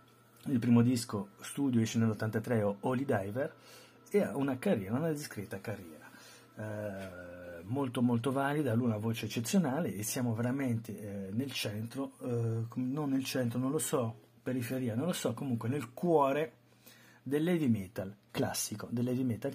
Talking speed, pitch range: 150 wpm, 110-130 Hz